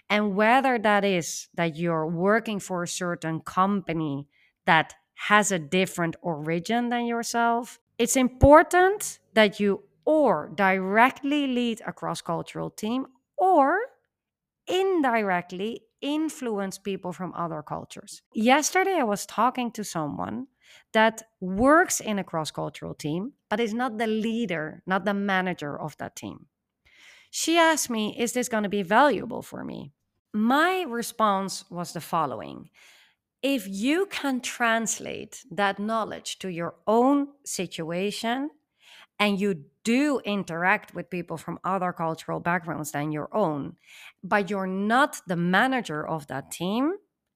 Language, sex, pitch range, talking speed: English, female, 175-245 Hz, 135 wpm